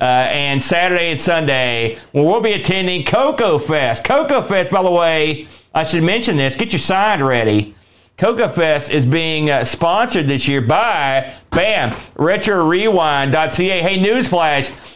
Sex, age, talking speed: male, 40-59, 150 wpm